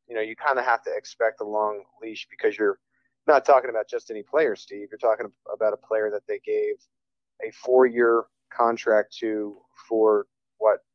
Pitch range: 110-130 Hz